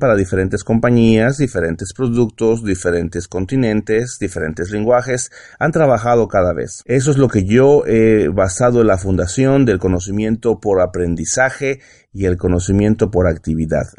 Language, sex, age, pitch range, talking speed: Spanish, male, 40-59, 95-130 Hz, 135 wpm